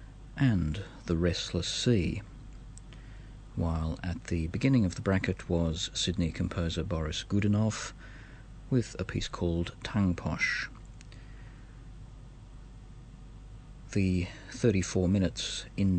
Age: 50-69